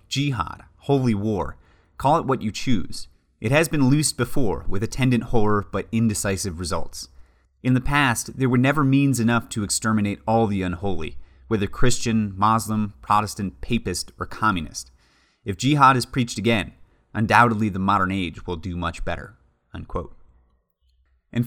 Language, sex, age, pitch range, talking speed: English, male, 30-49, 90-120 Hz, 150 wpm